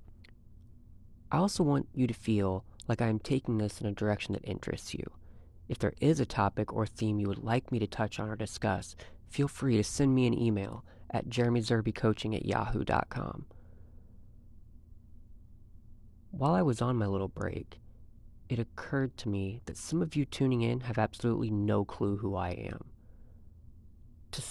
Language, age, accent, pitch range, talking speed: English, 30-49, American, 90-115 Hz, 170 wpm